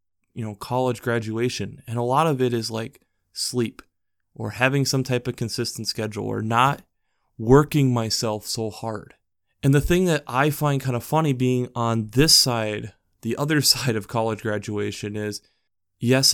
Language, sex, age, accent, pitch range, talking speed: English, male, 20-39, American, 110-130 Hz, 170 wpm